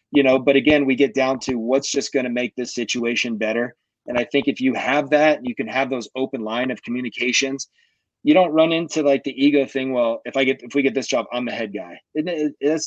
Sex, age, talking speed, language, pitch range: male, 30-49, 240 wpm, English, 120-135 Hz